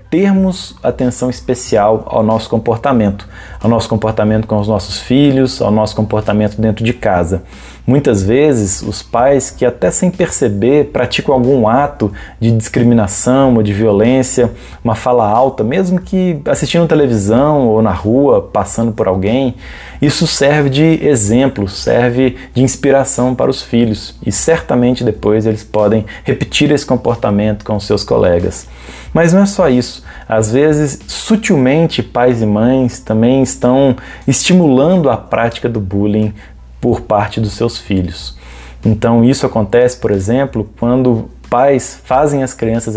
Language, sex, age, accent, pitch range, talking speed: Portuguese, male, 20-39, Brazilian, 105-130 Hz, 145 wpm